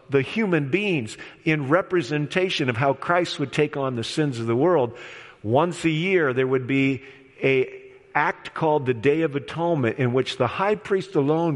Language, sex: English, male